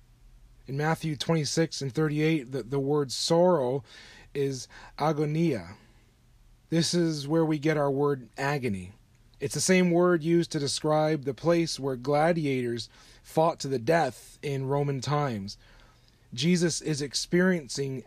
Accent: American